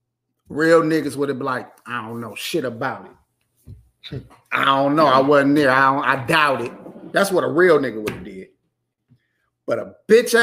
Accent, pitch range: American, 170-260 Hz